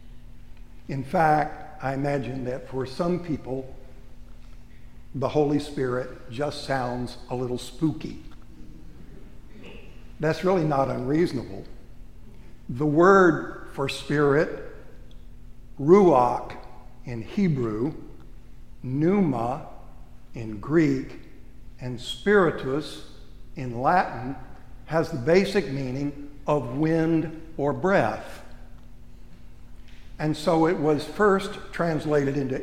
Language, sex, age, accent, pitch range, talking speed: English, male, 60-79, American, 120-155 Hz, 90 wpm